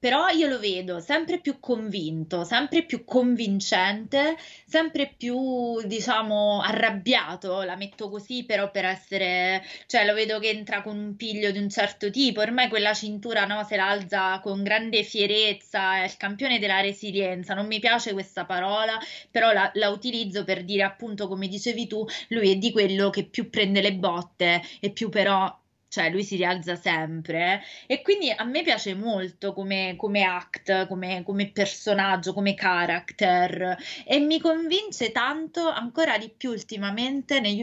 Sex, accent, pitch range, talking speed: female, native, 190-235 Hz, 160 wpm